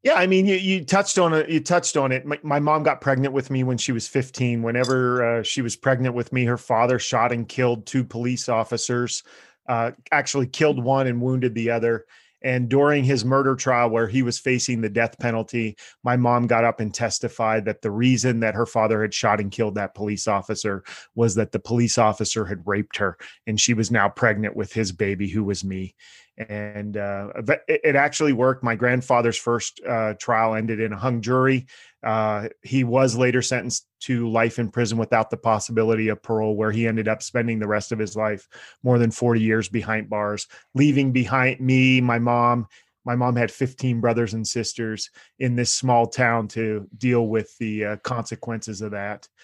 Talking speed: 195 wpm